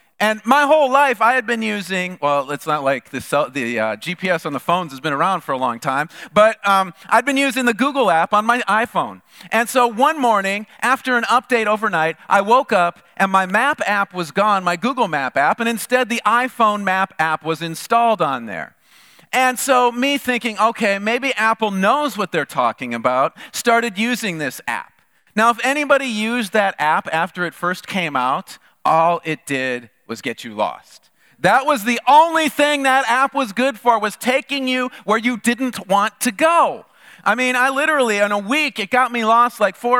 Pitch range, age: 180-245 Hz, 40-59